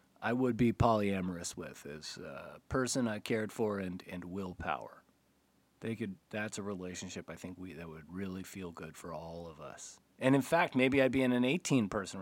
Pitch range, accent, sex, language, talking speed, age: 90-120 Hz, American, male, English, 200 wpm, 30-49